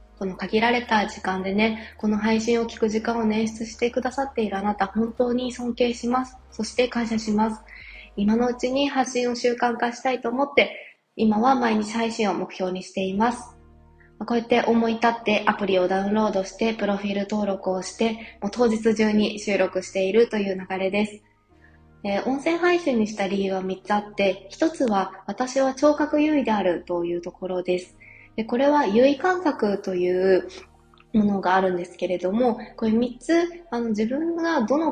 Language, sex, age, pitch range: Japanese, female, 20-39, 190-245 Hz